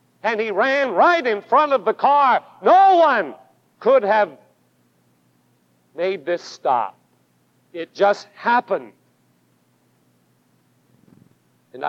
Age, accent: 50-69, American